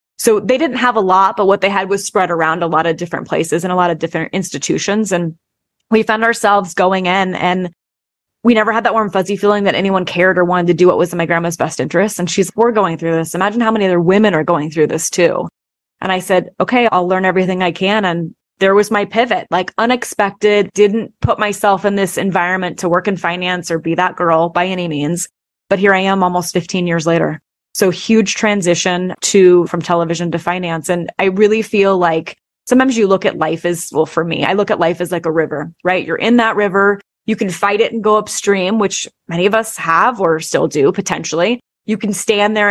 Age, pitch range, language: 20-39, 175-205 Hz, English